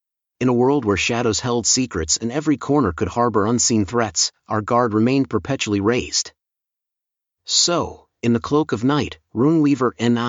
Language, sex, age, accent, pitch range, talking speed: English, male, 40-59, American, 105-130 Hz, 155 wpm